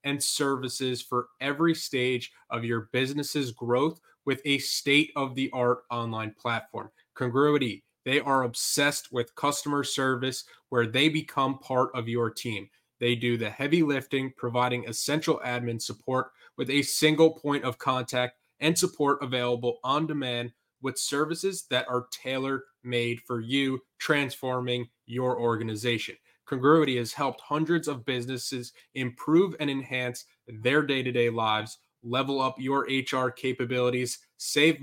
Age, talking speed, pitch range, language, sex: 20-39, 130 wpm, 120-145 Hz, English, male